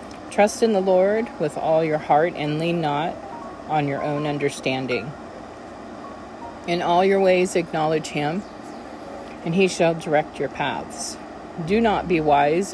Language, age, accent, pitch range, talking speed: English, 40-59, American, 155-190 Hz, 145 wpm